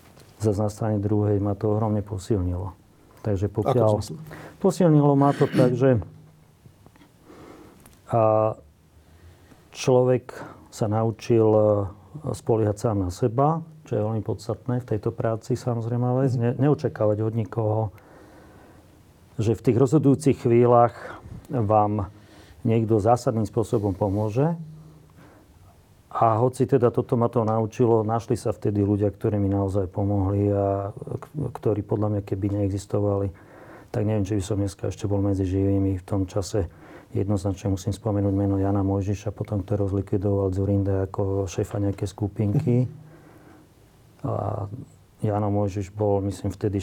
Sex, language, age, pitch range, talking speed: male, Slovak, 40-59, 100-120 Hz, 125 wpm